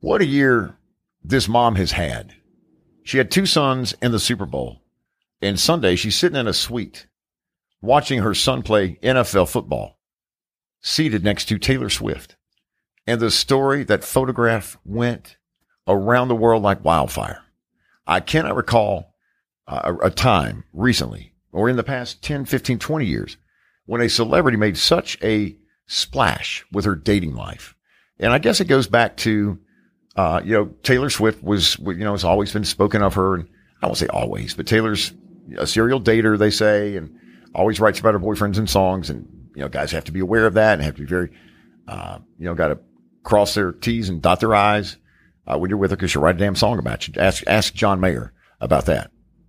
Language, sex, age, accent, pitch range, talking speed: English, male, 50-69, American, 95-120 Hz, 190 wpm